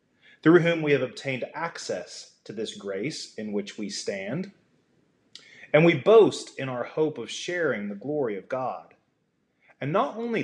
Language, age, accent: English, 30-49, American